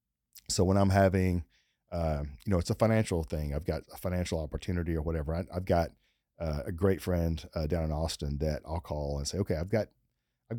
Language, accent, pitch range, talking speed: English, American, 75-100 Hz, 215 wpm